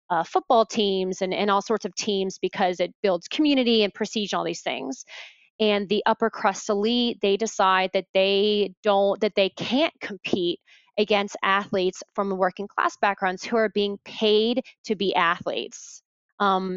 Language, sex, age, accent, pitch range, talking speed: English, female, 20-39, American, 195-235 Hz, 165 wpm